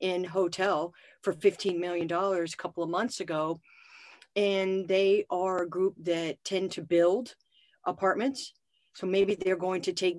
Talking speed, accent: 155 wpm, American